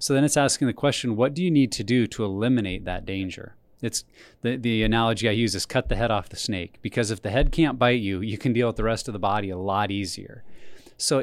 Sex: male